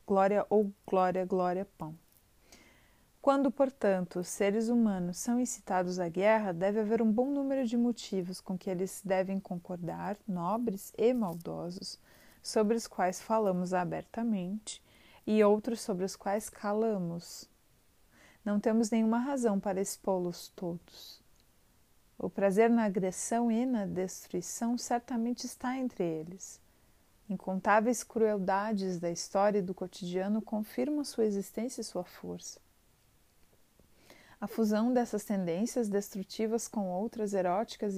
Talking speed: 125 wpm